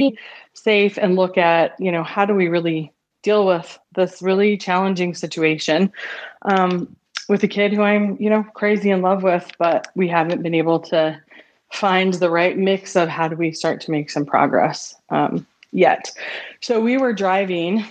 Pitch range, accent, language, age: 170-205 Hz, American, English, 20-39